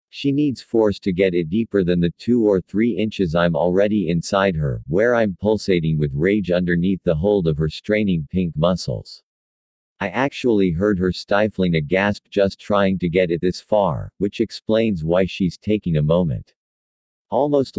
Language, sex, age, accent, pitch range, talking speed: English, male, 50-69, American, 85-105 Hz, 175 wpm